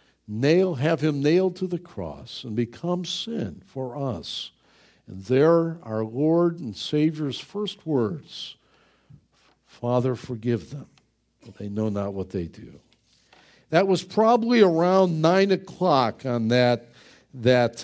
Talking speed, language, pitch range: 130 wpm, English, 135-195 Hz